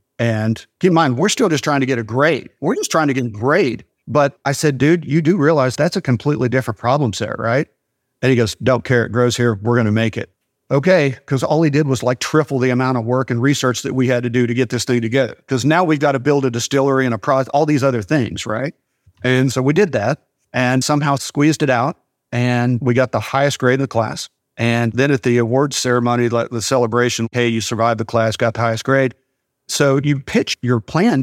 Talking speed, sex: 245 wpm, male